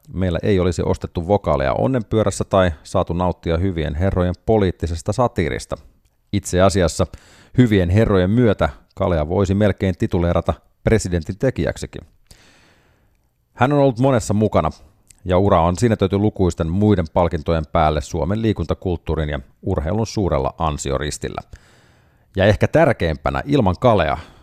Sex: male